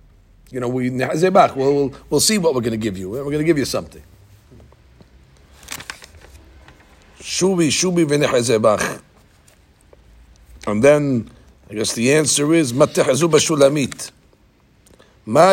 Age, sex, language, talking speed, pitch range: 50-69, male, English, 130 wpm, 105-160 Hz